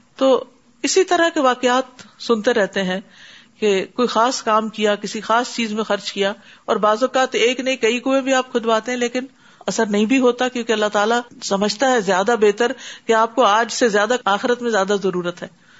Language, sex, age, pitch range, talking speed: Urdu, female, 50-69, 210-265 Hz, 200 wpm